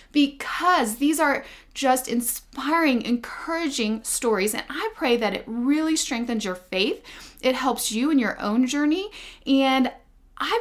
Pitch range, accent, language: 215-295 Hz, American, English